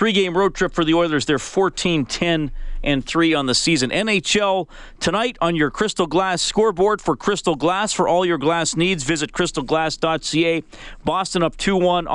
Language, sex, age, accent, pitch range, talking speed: English, male, 40-59, American, 135-175 Hz, 155 wpm